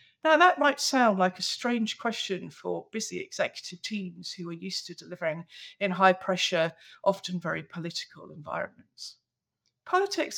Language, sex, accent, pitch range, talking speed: English, female, British, 185-260 Hz, 145 wpm